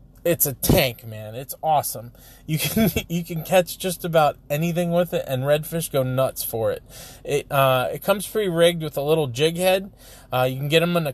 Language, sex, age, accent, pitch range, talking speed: English, male, 20-39, American, 130-155 Hz, 210 wpm